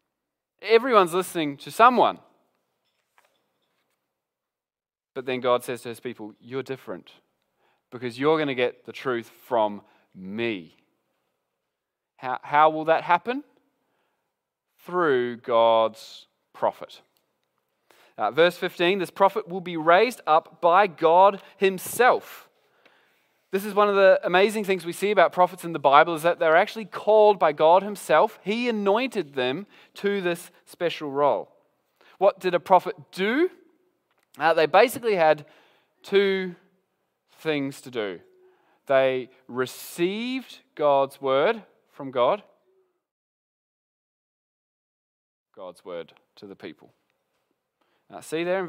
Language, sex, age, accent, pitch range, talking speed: English, male, 20-39, Australian, 140-205 Hz, 120 wpm